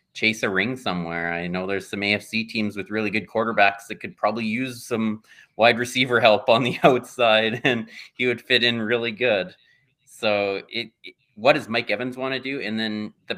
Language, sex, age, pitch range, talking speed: English, male, 30-49, 100-130 Hz, 200 wpm